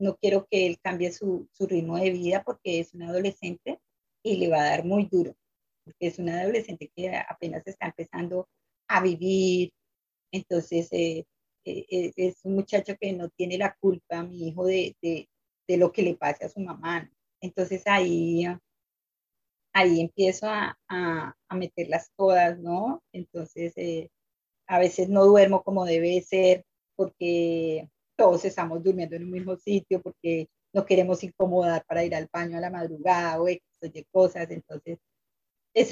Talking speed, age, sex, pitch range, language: 165 wpm, 30-49, female, 170-190 Hz, English